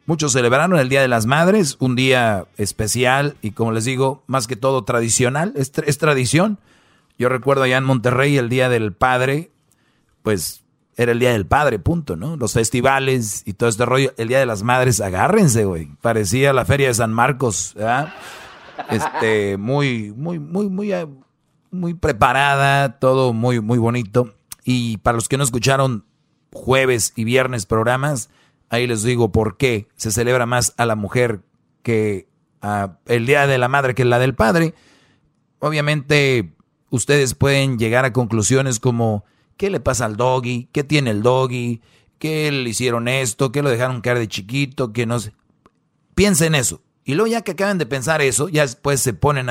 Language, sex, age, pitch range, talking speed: Spanish, male, 40-59, 115-140 Hz, 175 wpm